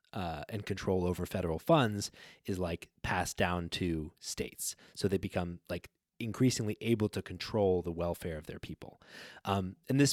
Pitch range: 95-125 Hz